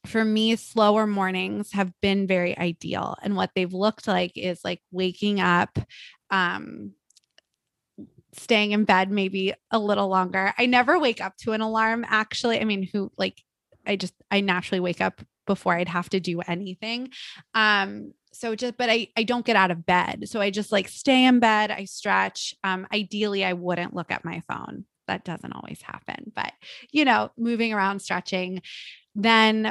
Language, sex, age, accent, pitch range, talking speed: English, female, 20-39, American, 180-220 Hz, 180 wpm